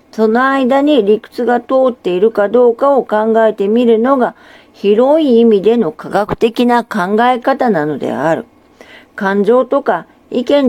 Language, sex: Japanese, female